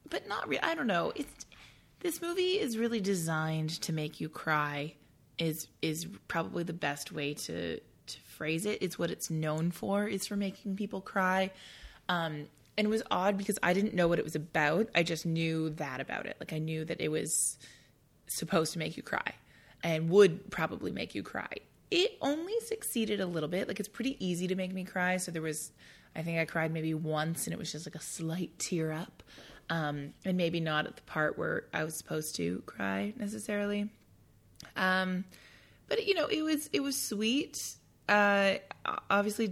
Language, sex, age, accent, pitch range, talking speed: English, female, 20-39, American, 155-200 Hz, 195 wpm